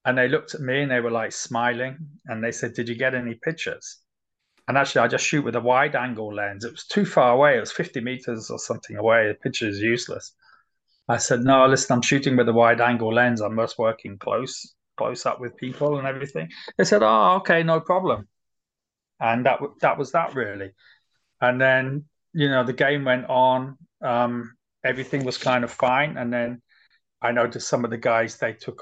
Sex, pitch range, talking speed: male, 115-150 Hz, 210 wpm